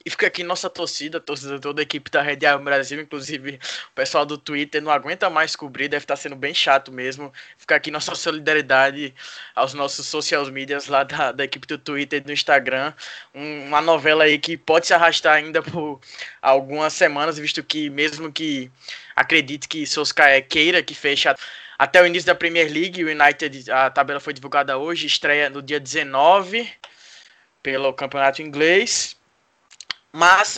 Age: 20-39